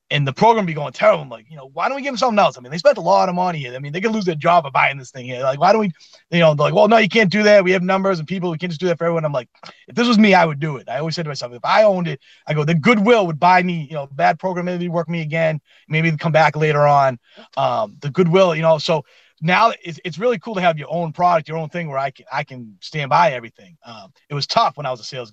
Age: 30-49